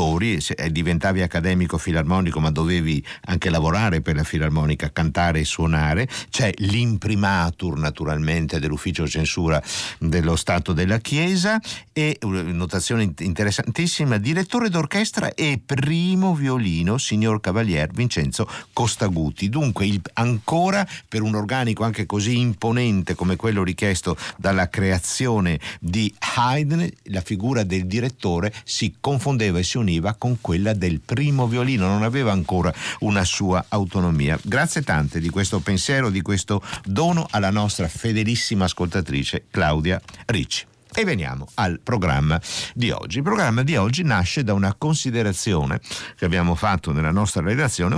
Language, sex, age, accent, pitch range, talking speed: Italian, male, 50-69, native, 85-115 Hz, 130 wpm